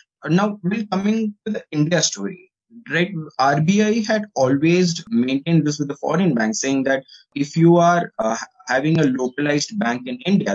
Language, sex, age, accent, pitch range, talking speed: English, male, 20-39, Indian, 120-180 Hz, 175 wpm